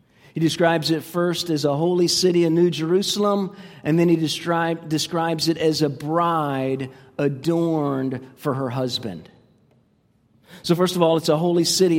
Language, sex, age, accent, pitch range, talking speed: English, male, 40-59, American, 150-175 Hz, 155 wpm